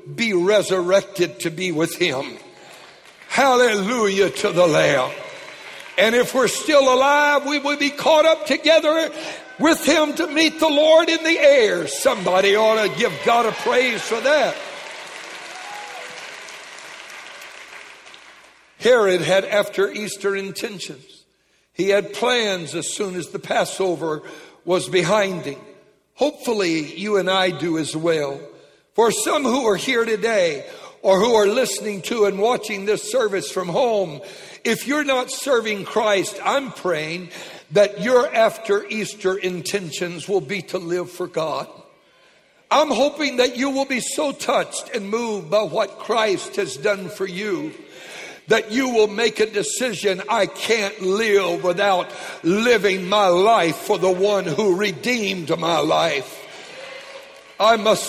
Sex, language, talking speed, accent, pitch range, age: male, English, 140 wpm, American, 190-280 Hz, 60-79